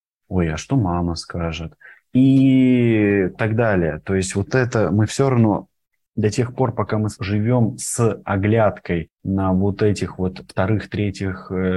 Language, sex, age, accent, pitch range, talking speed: Russian, male, 20-39, native, 95-120 Hz, 145 wpm